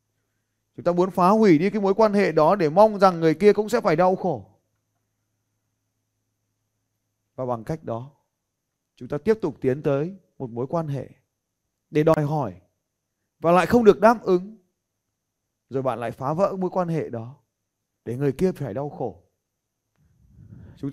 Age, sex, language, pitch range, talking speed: 20-39, male, Vietnamese, 110-170 Hz, 170 wpm